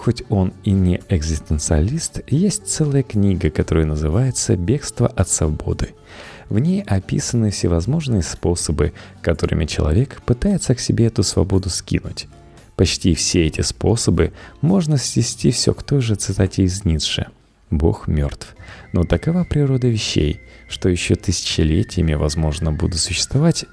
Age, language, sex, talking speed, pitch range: 30-49, Russian, male, 130 wpm, 80-120 Hz